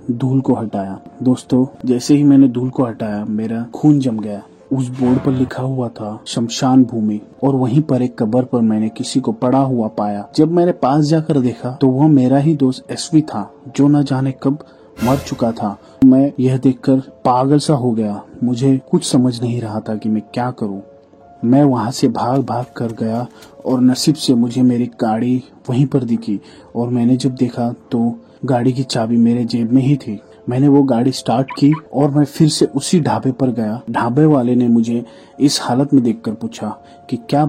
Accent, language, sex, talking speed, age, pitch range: native, Hindi, male, 200 wpm, 30-49, 115-135 Hz